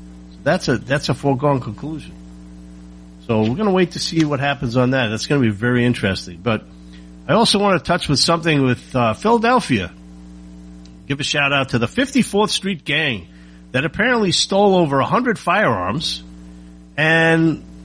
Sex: male